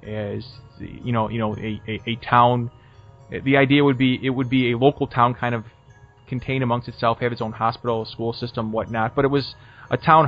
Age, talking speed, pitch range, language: 20-39, 210 wpm, 115-140 Hz, English